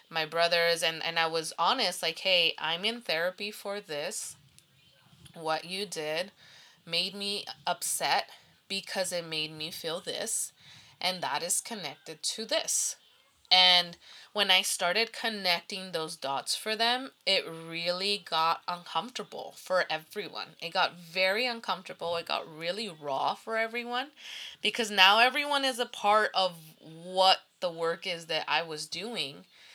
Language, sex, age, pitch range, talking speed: English, female, 20-39, 160-200 Hz, 145 wpm